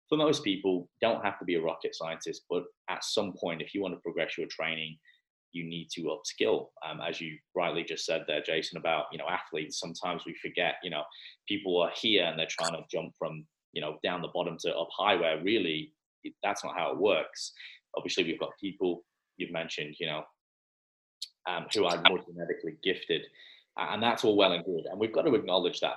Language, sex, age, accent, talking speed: English, male, 20-39, British, 215 wpm